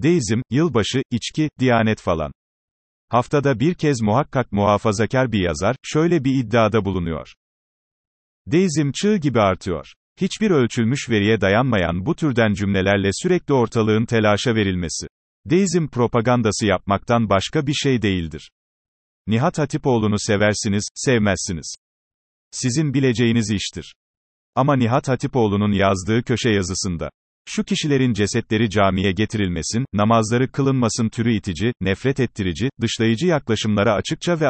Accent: native